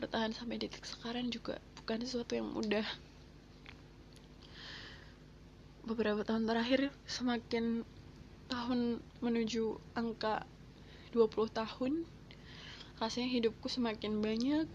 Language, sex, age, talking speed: Indonesian, female, 20-39, 90 wpm